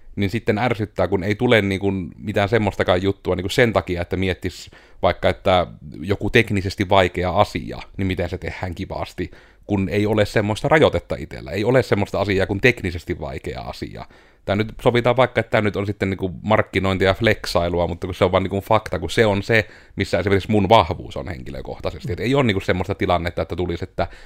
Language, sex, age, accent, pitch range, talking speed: Finnish, male, 30-49, native, 90-110 Hz, 205 wpm